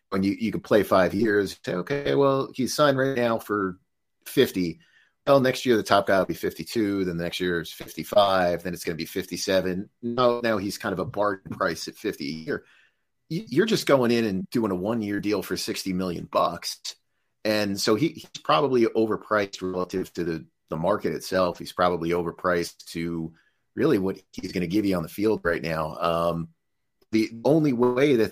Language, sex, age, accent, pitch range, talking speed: English, male, 30-49, American, 85-110 Hz, 200 wpm